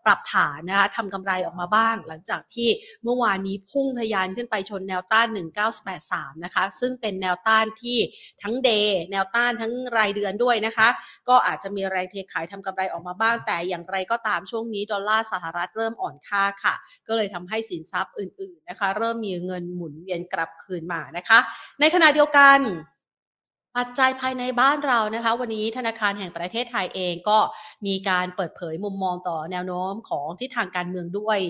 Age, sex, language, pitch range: 30-49, female, Thai, 180-225 Hz